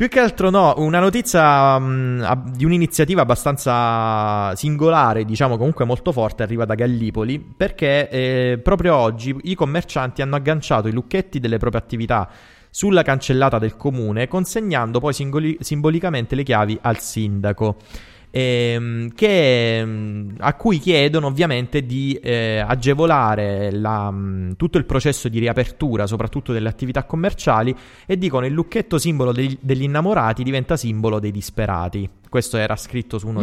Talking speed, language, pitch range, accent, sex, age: 130 wpm, Italian, 110-145 Hz, native, male, 20-39